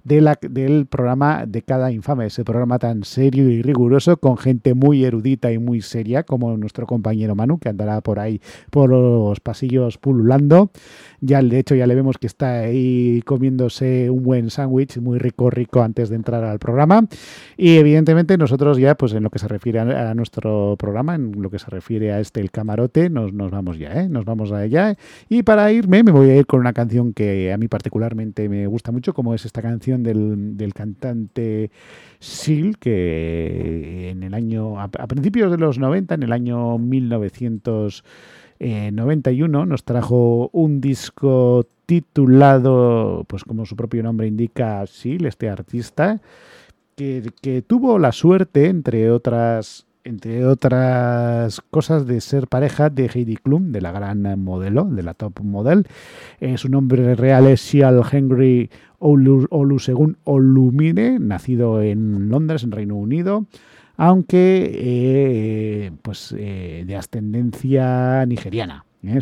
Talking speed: 155 wpm